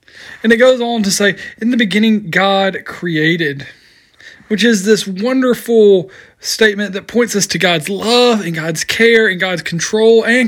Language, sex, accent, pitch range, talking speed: English, male, American, 170-210 Hz, 165 wpm